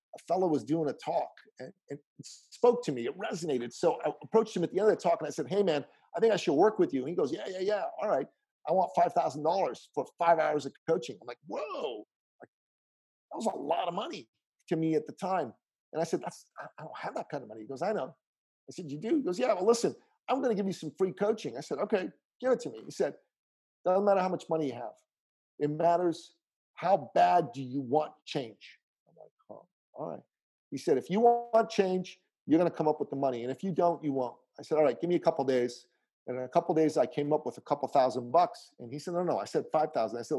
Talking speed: 260 wpm